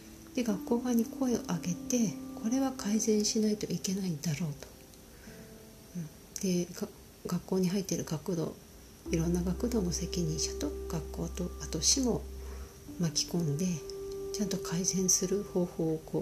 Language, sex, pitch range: Japanese, female, 140-225 Hz